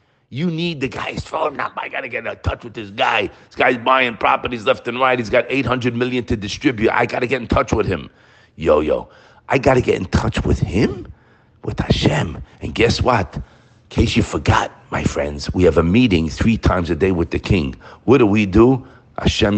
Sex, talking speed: male, 220 wpm